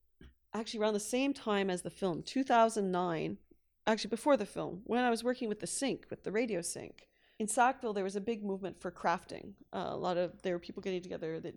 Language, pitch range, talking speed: French, 190-255 Hz, 225 wpm